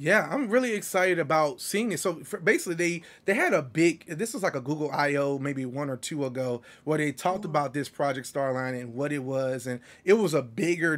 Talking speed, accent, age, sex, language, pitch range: 225 wpm, American, 30-49, male, English, 140-175 Hz